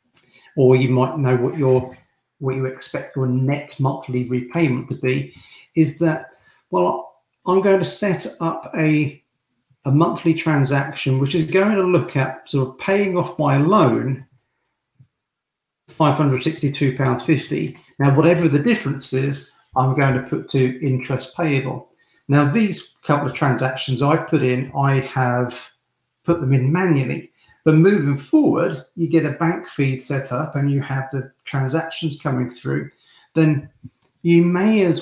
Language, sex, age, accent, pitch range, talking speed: English, male, 50-69, British, 130-160 Hz, 145 wpm